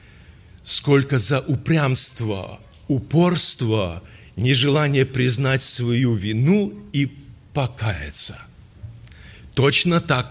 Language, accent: Russian, native